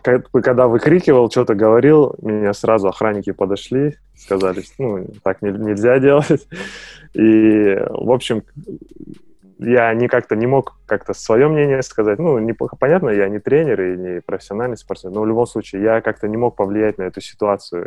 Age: 20-39